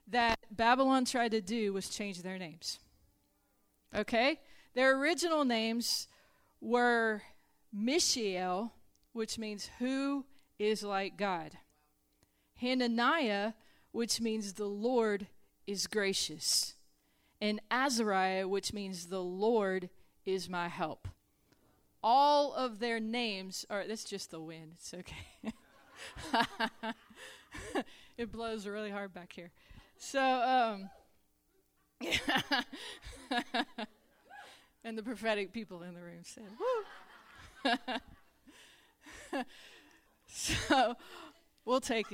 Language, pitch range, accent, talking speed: English, 195-250 Hz, American, 95 wpm